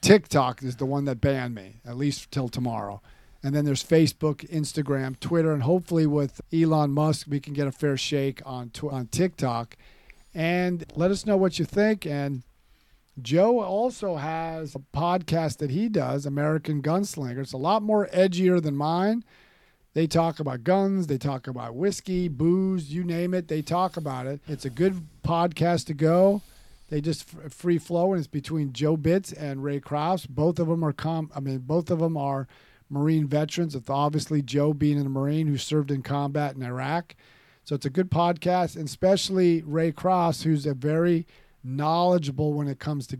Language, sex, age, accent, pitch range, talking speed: English, male, 40-59, American, 140-175 Hz, 180 wpm